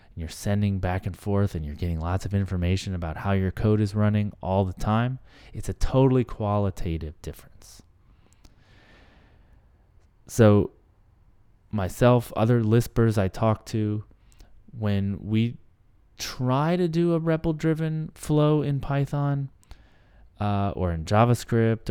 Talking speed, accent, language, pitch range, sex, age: 130 wpm, American, English, 90-120 Hz, male, 20-39